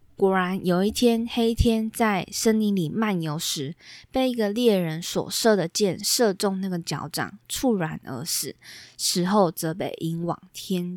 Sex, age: female, 20-39